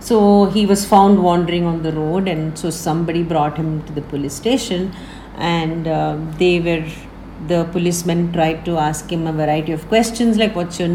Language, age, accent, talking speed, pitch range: English, 50-69, Indian, 185 wpm, 160-205 Hz